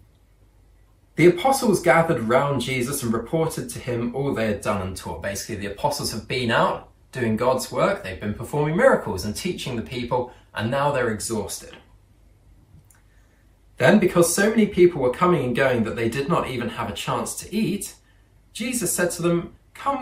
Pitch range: 100-160 Hz